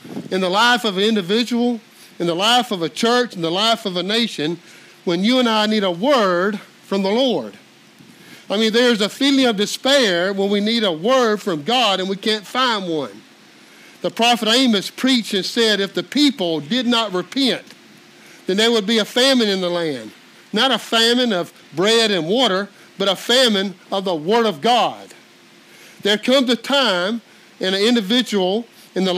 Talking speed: 190 wpm